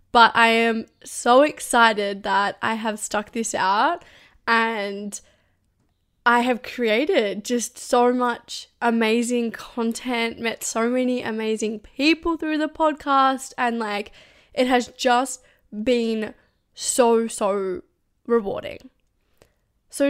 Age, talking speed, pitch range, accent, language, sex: 10-29, 115 wpm, 220-265 Hz, Australian, English, female